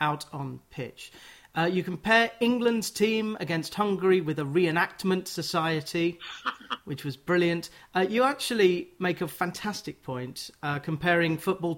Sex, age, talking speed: male, 40-59, 140 wpm